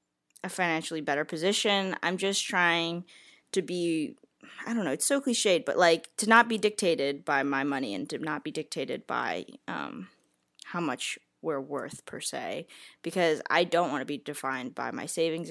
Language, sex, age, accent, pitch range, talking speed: English, female, 10-29, American, 145-185 Hz, 180 wpm